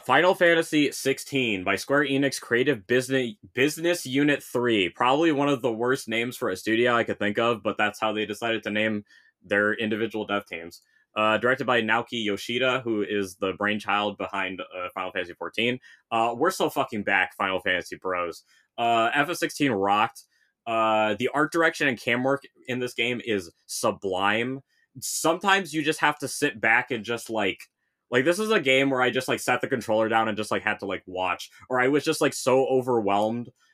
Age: 20-39